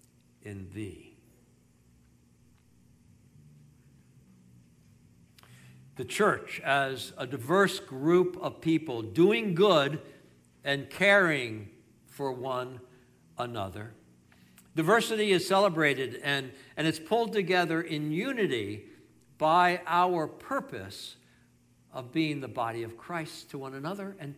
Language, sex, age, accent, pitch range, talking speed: English, male, 60-79, American, 125-200 Hz, 100 wpm